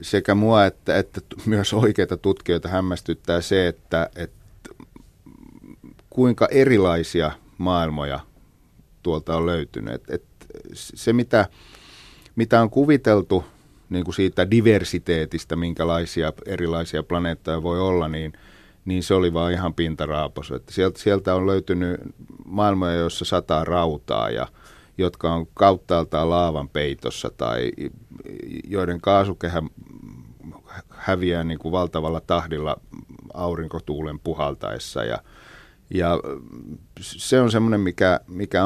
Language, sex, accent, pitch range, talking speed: Finnish, male, native, 85-105 Hz, 110 wpm